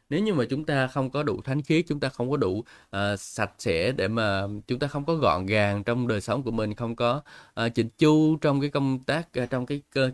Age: 20-39